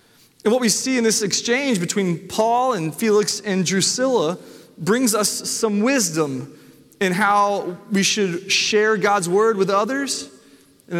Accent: American